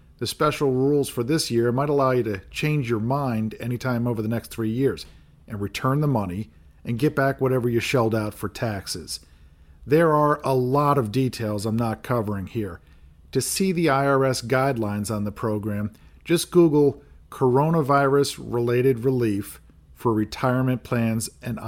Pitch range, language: 105-135 Hz, English